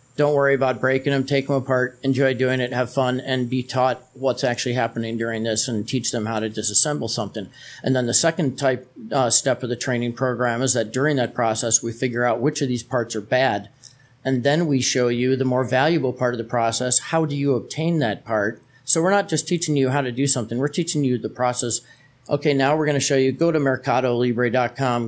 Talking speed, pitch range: 230 wpm, 120-140 Hz